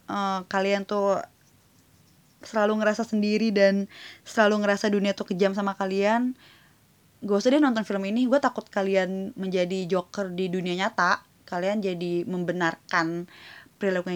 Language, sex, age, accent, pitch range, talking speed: Indonesian, female, 20-39, native, 175-215 Hz, 130 wpm